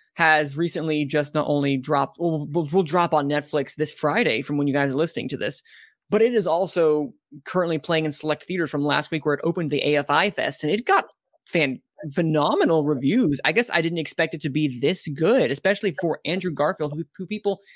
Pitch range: 140-165 Hz